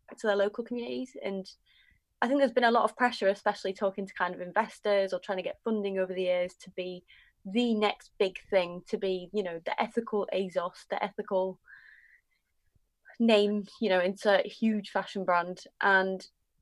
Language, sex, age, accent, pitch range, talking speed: English, female, 20-39, British, 185-220 Hz, 185 wpm